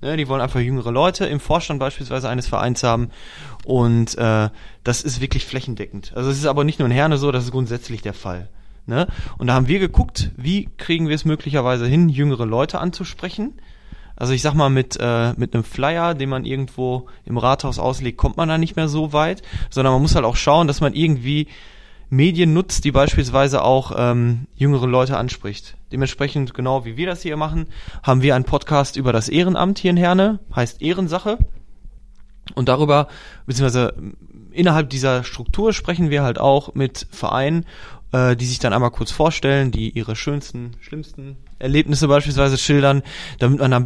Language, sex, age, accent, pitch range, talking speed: German, male, 20-39, German, 120-150 Hz, 185 wpm